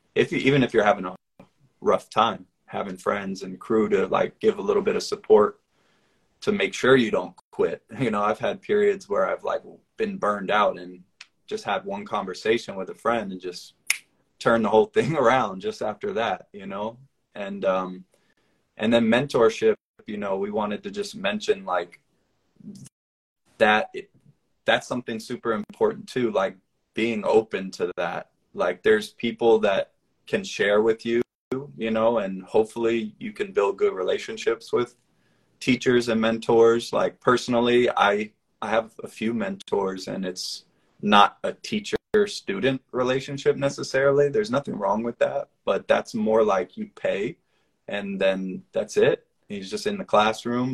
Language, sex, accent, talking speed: English, male, American, 165 wpm